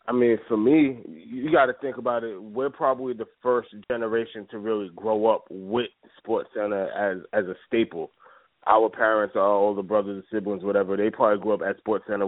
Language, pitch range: English, 105-125 Hz